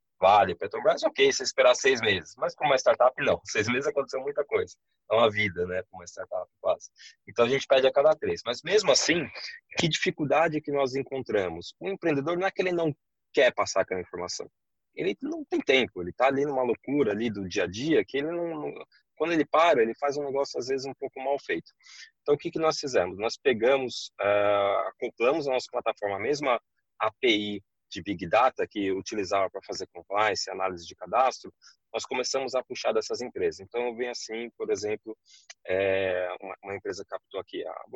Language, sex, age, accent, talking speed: Portuguese, male, 20-39, Brazilian, 205 wpm